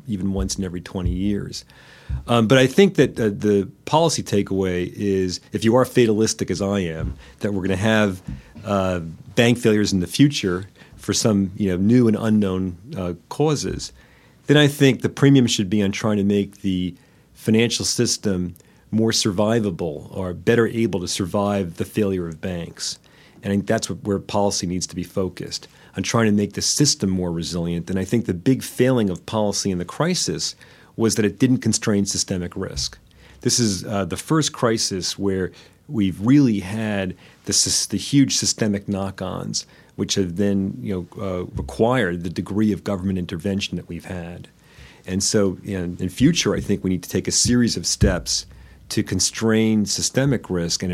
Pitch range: 95-115 Hz